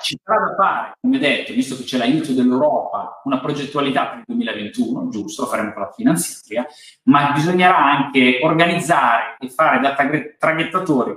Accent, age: native, 30-49